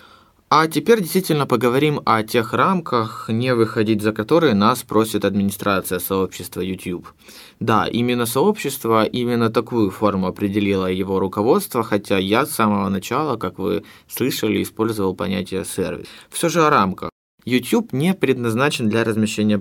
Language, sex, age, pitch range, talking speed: Ukrainian, male, 20-39, 100-135 Hz, 140 wpm